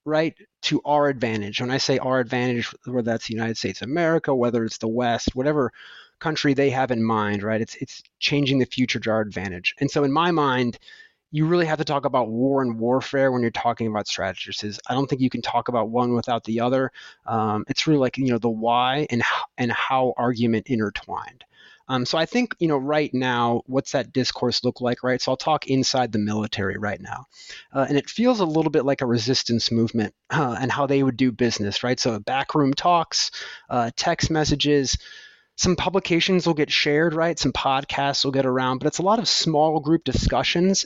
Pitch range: 120-150 Hz